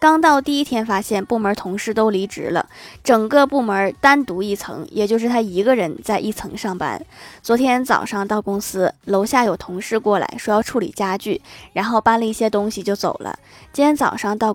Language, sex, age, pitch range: Chinese, female, 20-39, 195-240 Hz